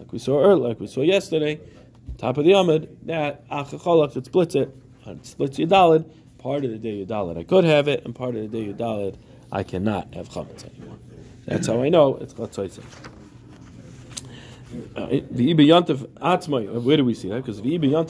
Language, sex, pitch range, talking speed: English, male, 120-155 Hz, 190 wpm